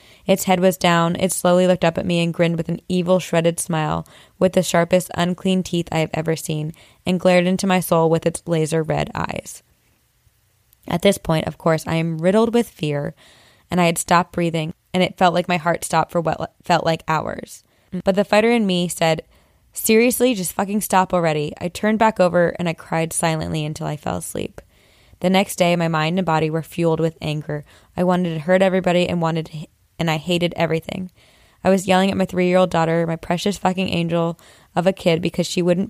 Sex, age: female, 20-39